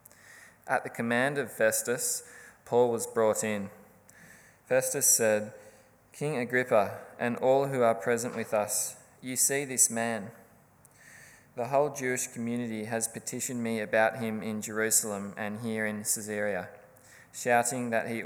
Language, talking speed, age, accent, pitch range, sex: English, 140 wpm, 20-39, Australian, 105-120 Hz, male